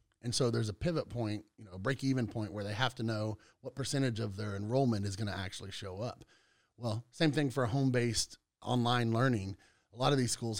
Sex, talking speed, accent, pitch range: male, 225 wpm, American, 100-120 Hz